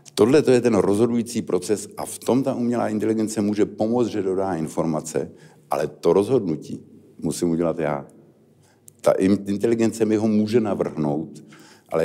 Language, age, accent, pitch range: Czech, 60-79, native, 85-105 Hz